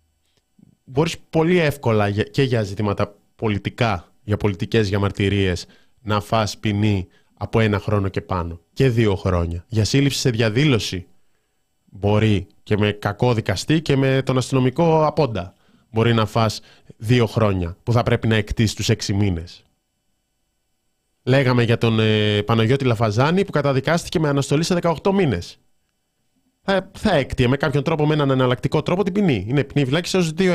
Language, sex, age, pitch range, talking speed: Greek, male, 20-39, 105-140 Hz, 150 wpm